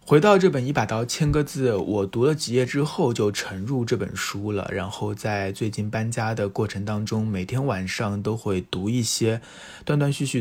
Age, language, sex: 20-39, Chinese, male